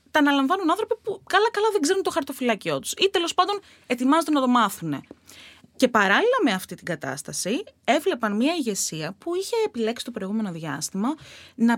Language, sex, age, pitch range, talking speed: Greek, female, 20-39, 195-290 Hz, 170 wpm